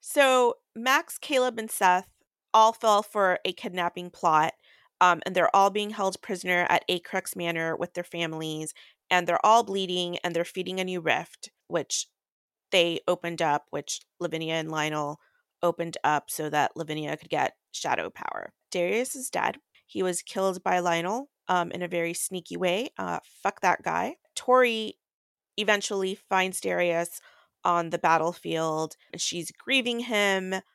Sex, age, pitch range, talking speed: female, 30-49, 170-205 Hz, 155 wpm